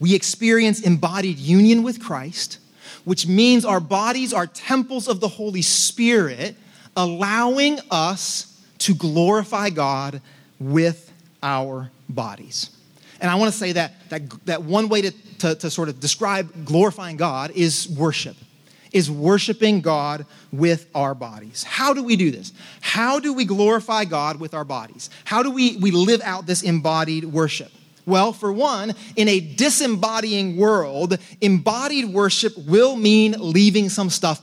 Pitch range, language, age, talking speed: 165-220 Hz, English, 30-49, 150 wpm